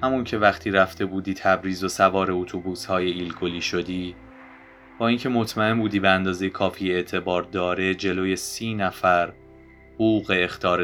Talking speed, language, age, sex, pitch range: 145 wpm, Persian, 20-39, male, 80-95 Hz